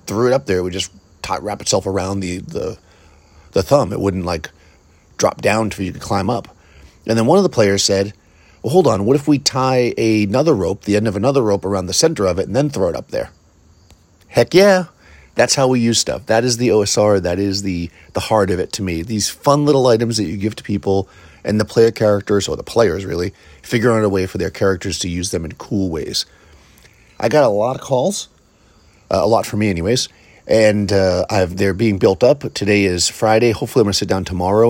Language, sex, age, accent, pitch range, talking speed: English, male, 30-49, American, 90-115 Hz, 235 wpm